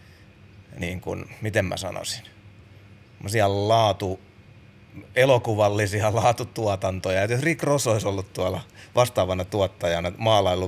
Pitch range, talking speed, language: 90-105 Hz, 105 wpm, Finnish